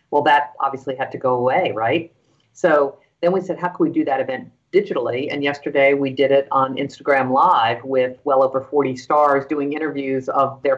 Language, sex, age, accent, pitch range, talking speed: English, female, 50-69, American, 135-170 Hz, 200 wpm